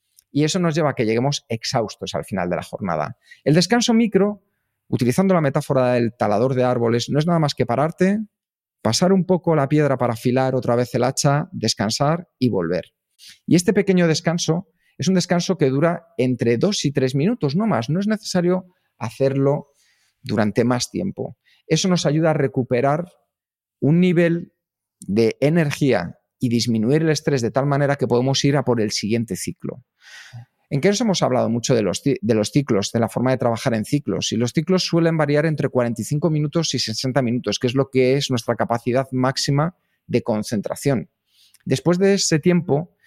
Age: 40-59